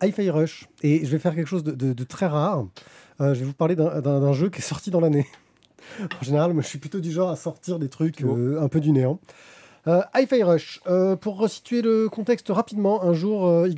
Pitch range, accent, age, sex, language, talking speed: 150-200 Hz, French, 20-39, male, French, 245 wpm